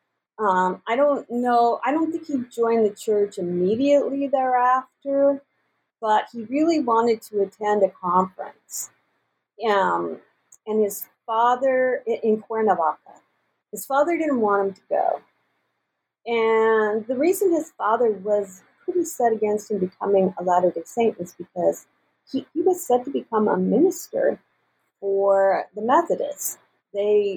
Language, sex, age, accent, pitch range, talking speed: English, female, 40-59, American, 200-275 Hz, 135 wpm